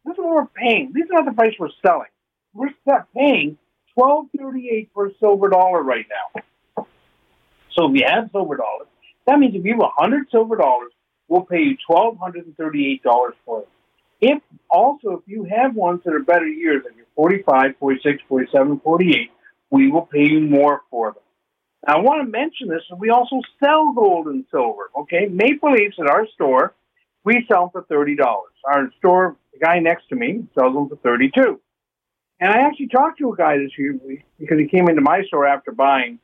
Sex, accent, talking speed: male, American, 195 wpm